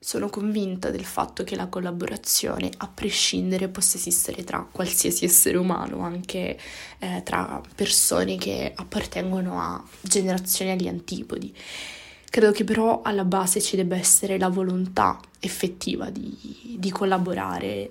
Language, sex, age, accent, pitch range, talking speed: Italian, female, 20-39, native, 170-190 Hz, 130 wpm